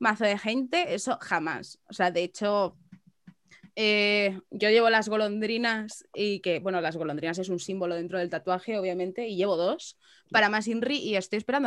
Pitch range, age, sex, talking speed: 185-245 Hz, 20-39, female, 180 wpm